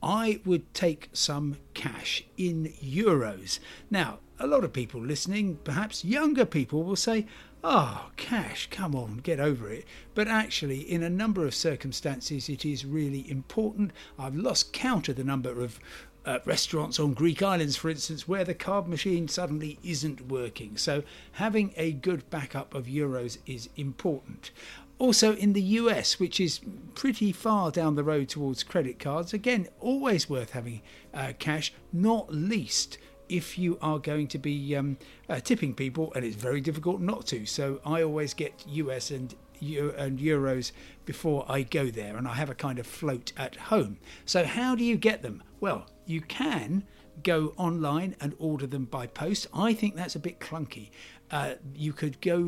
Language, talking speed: English, 175 wpm